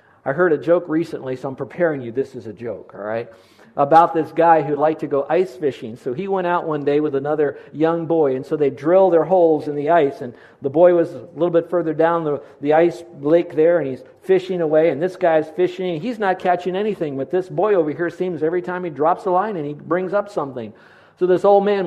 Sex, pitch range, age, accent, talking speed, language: male, 140-180 Hz, 50-69, American, 245 wpm, English